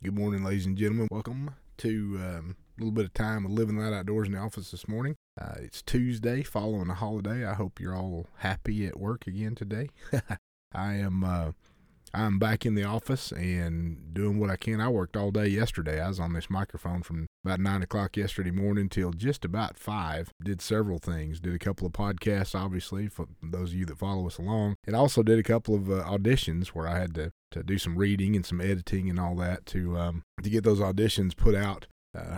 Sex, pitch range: male, 90-110 Hz